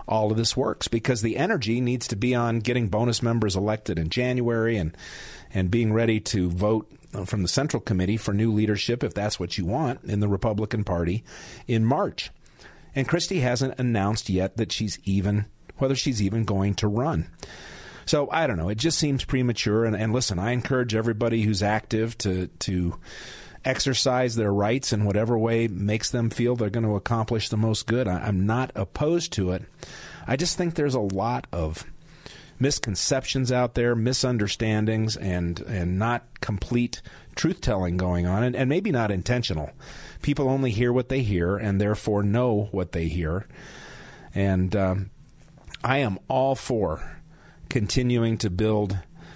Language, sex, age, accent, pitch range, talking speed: English, male, 40-59, American, 100-125 Hz, 170 wpm